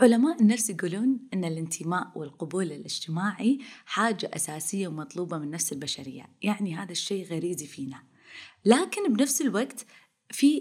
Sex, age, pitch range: female, 20-39, 165-235 Hz